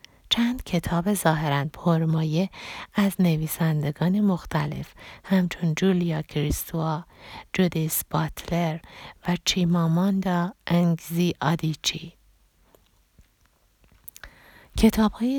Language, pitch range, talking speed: Persian, 160-185 Hz, 70 wpm